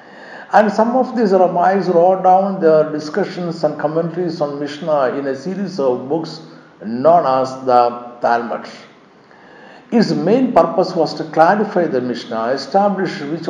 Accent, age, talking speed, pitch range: native, 50-69, 140 wpm, 140-195 Hz